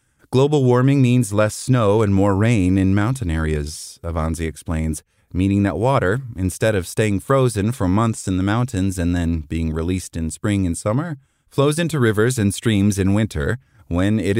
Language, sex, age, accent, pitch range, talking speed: English, male, 30-49, American, 90-125 Hz, 175 wpm